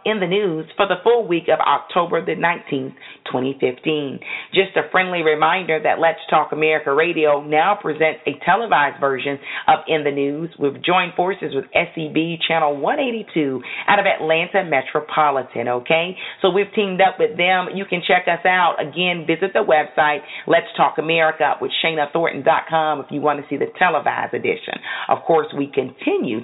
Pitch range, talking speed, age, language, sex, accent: 145-185 Hz, 170 wpm, 40-59, English, female, American